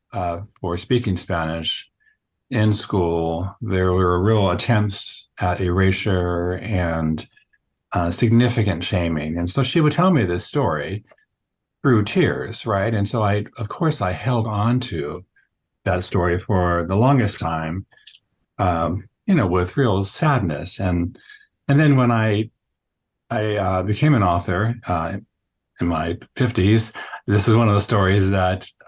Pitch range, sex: 90-120 Hz, male